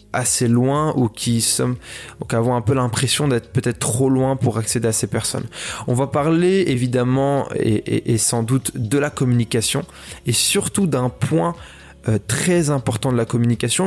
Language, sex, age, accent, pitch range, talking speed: French, male, 20-39, French, 120-145 Hz, 175 wpm